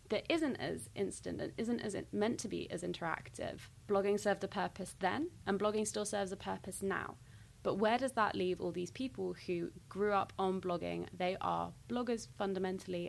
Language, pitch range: English, 175-200 Hz